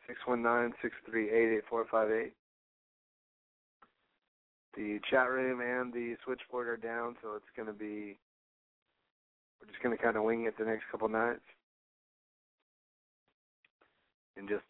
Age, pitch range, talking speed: 40-59, 105-125 Hz, 140 wpm